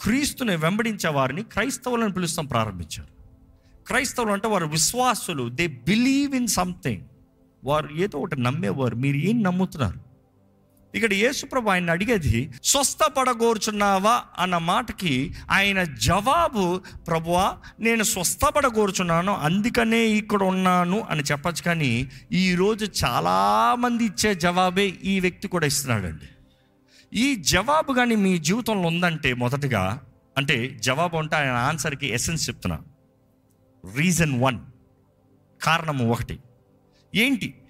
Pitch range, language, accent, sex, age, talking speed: 135-215 Hz, Telugu, native, male, 50-69, 110 wpm